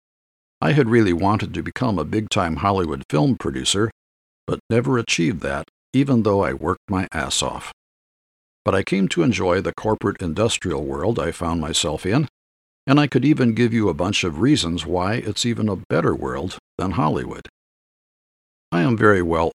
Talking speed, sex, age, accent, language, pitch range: 170 wpm, male, 50-69, American, English, 80-110 Hz